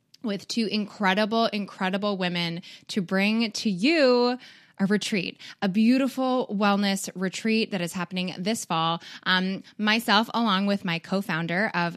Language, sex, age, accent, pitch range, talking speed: English, female, 10-29, American, 170-225 Hz, 135 wpm